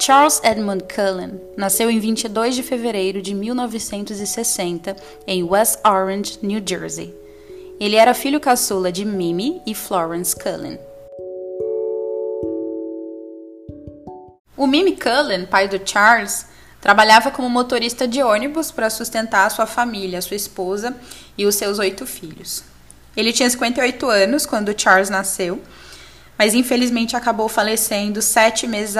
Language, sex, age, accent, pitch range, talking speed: Portuguese, female, 10-29, Brazilian, 195-235 Hz, 130 wpm